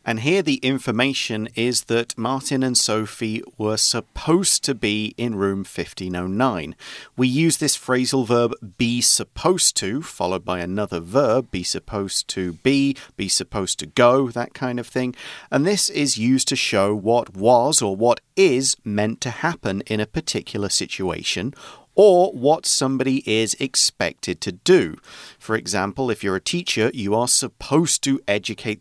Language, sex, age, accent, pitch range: Chinese, male, 40-59, British, 105-135 Hz